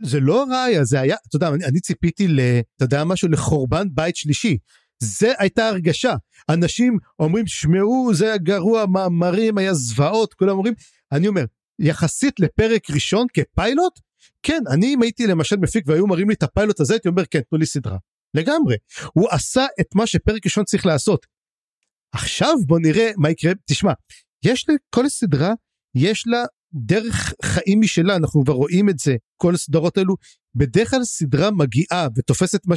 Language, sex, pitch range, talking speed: Hebrew, male, 150-210 Hz, 170 wpm